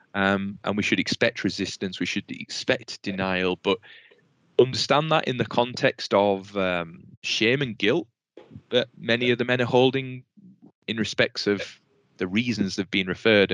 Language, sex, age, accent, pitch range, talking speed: English, male, 20-39, British, 90-105 Hz, 160 wpm